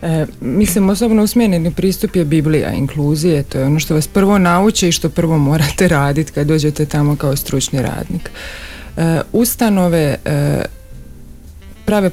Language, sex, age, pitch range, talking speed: Croatian, female, 40-59, 145-180 Hz, 150 wpm